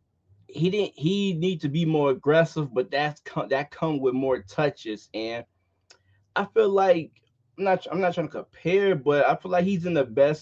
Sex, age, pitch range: male, 20-39, 130-175 Hz